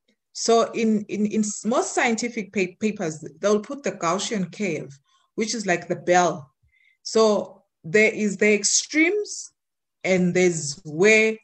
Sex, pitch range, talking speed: female, 170-220 Hz, 130 wpm